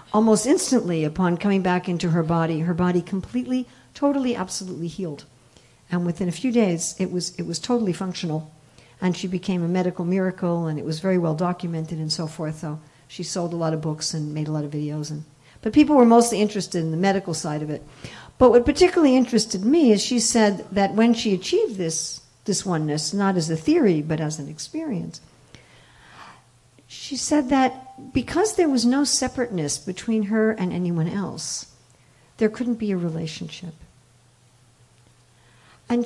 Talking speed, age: 180 wpm, 60-79